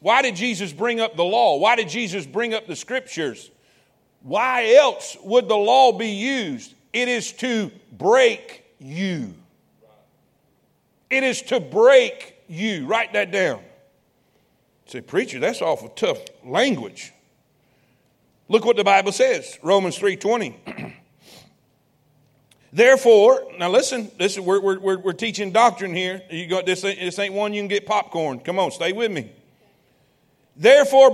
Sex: male